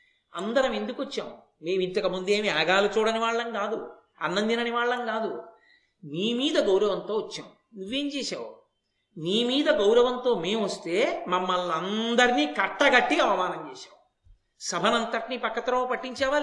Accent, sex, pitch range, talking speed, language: native, male, 220-305 Hz, 120 wpm, Telugu